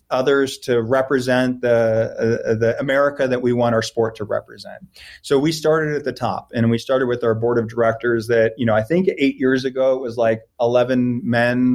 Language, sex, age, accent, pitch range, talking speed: English, male, 30-49, American, 115-135 Hz, 210 wpm